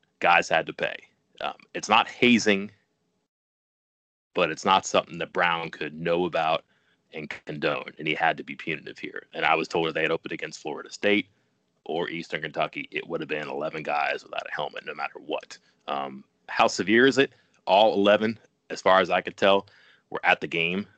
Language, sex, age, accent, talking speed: English, male, 30-49, American, 195 wpm